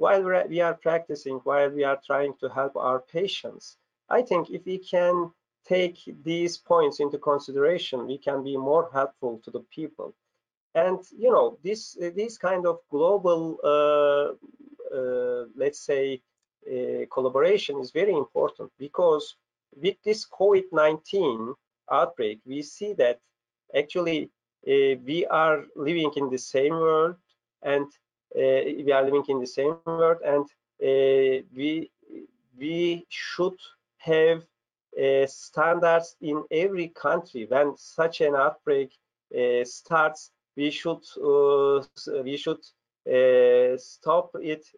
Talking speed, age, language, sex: 130 wpm, 40-59, English, male